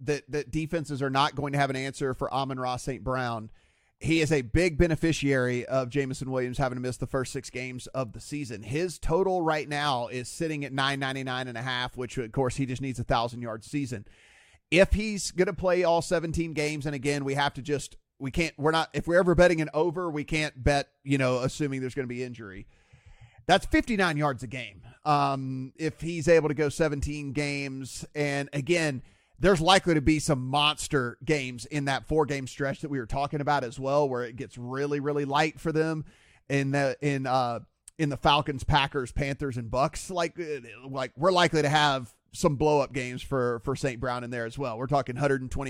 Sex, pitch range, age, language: male, 130-155 Hz, 30-49, English